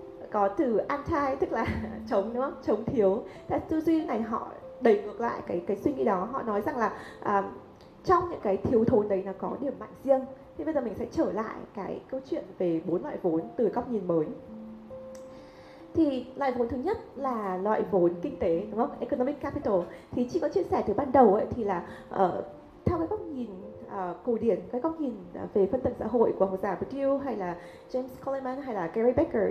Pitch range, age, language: 195-275 Hz, 20-39, Vietnamese